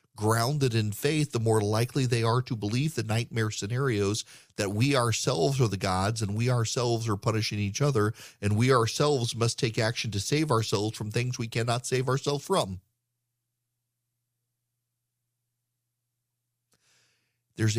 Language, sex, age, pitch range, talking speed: English, male, 40-59, 110-130 Hz, 145 wpm